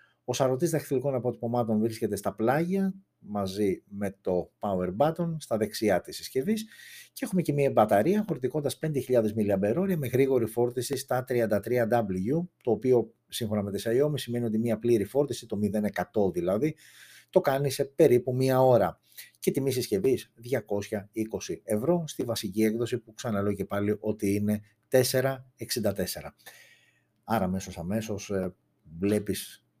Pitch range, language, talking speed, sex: 100-130 Hz, Greek, 135 wpm, male